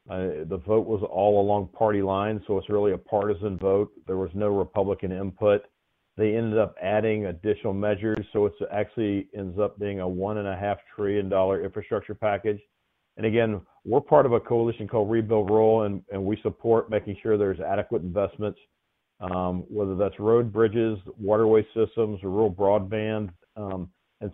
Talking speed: 165 wpm